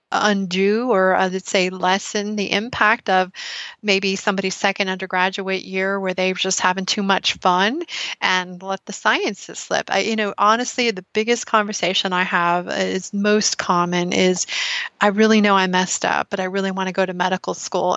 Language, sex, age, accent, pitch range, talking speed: English, female, 30-49, American, 185-210 Hz, 175 wpm